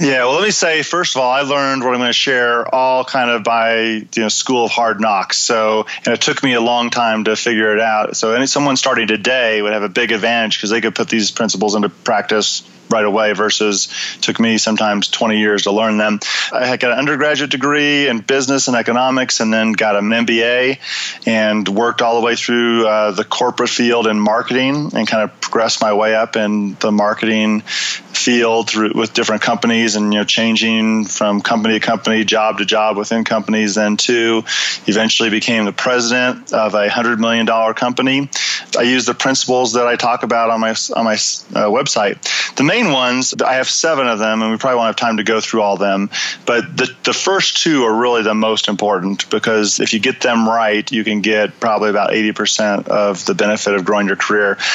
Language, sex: English, male